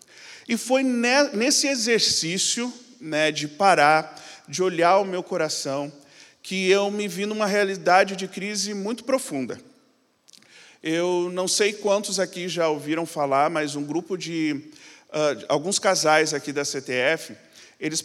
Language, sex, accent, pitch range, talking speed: Portuguese, male, Brazilian, 150-195 Hz, 135 wpm